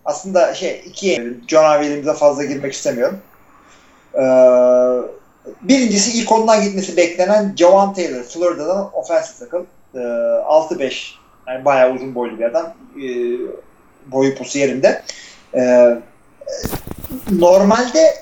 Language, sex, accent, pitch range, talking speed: Turkish, male, native, 145-215 Hz, 110 wpm